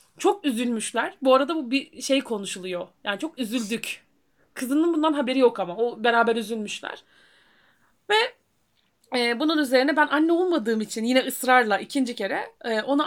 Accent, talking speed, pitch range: native, 140 wpm, 225-300 Hz